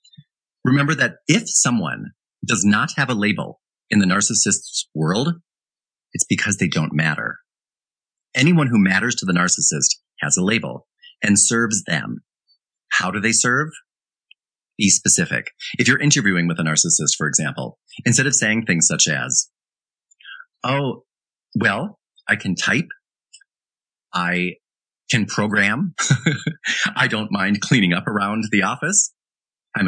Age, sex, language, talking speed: 30-49, male, English, 135 wpm